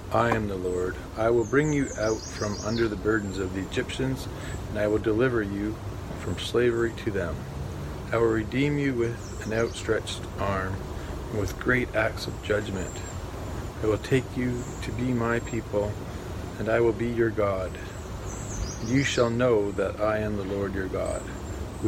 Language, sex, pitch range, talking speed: English, male, 95-115 Hz, 175 wpm